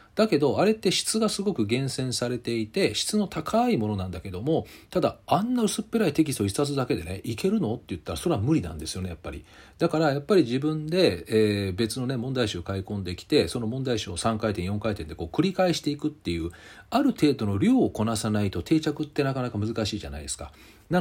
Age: 40-59